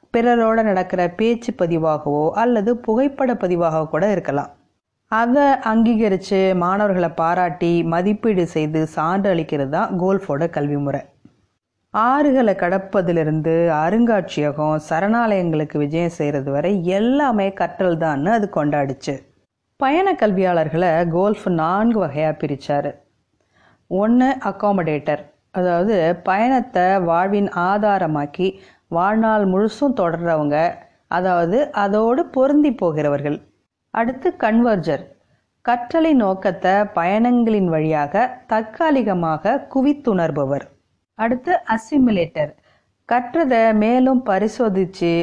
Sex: female